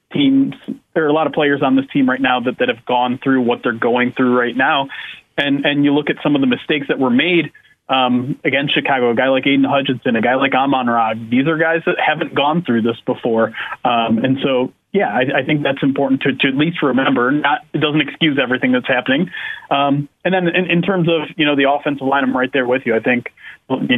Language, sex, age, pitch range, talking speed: English, male, 30-49, 130-155 Hz, 245 wpm